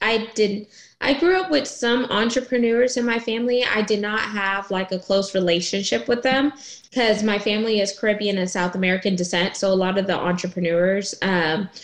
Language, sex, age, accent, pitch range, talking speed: English, female, 20-39, American, 175-210 Hz, 190 wpm